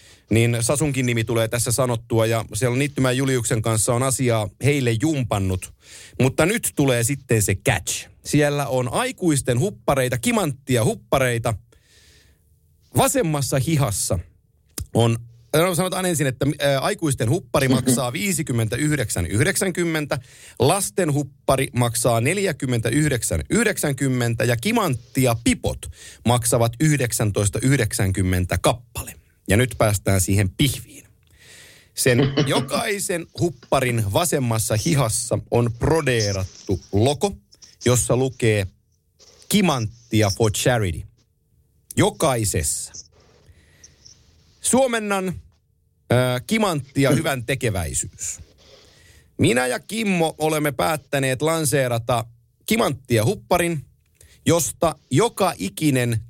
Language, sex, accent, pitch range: Finnish, male, native, 110-145 Hz